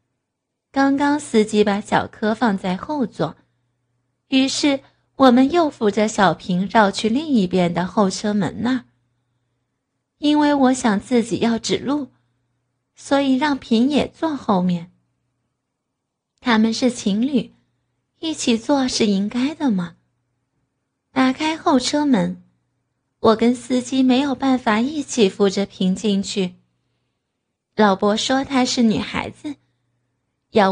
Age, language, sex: 20-39, Chinese, female